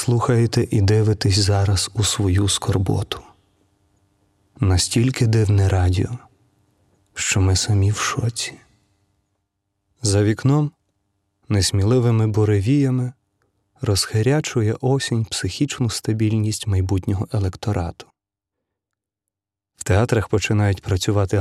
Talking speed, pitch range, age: 80 wpm, 100-115 Hz, 30-49